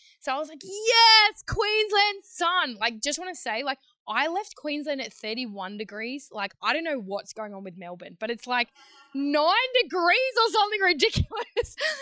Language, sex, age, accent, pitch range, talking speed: English, female, 10-29, Australian, 220-300 Hz, 180 wpm